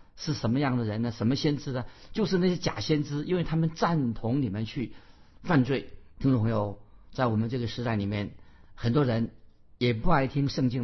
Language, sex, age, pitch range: Chinese, male, 50-69, 115-145 Hz